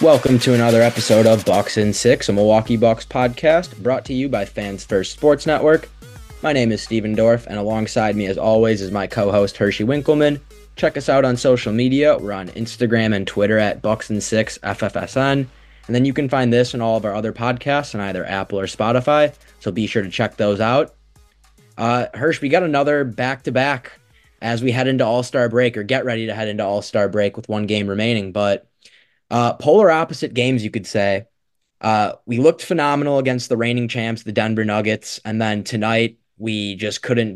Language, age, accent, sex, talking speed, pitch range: English, 20-39, American, male, 200 wpm, 105-125 Hz